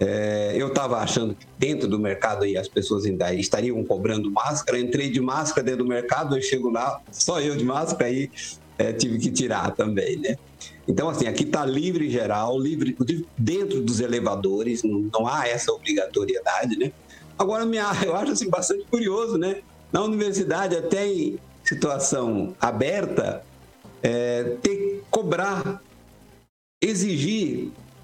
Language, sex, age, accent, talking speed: Portuguese, male, 50-69, Brazilian, 150 wpm